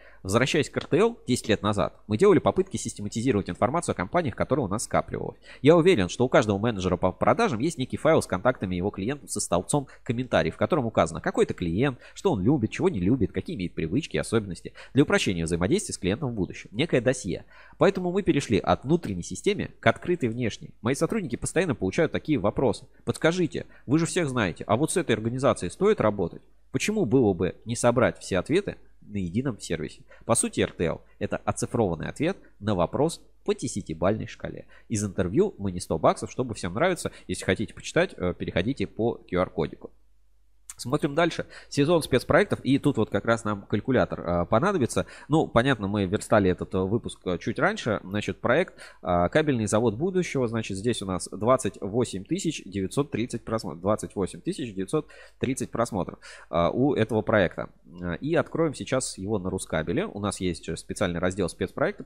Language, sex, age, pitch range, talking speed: Russian, male, 20-39, 95-135 Hz, 170 wpm